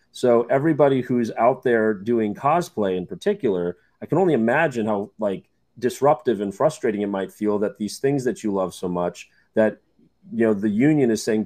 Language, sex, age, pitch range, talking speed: English, male, 30-49, 100-125 Hz, 190 wpm